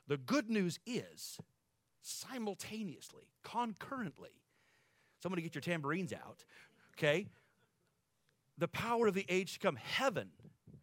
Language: English